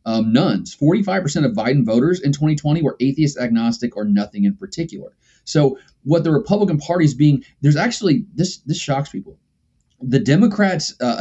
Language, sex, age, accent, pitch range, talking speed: English, male, 30-49, American, 125-170 Hz, 165 wpm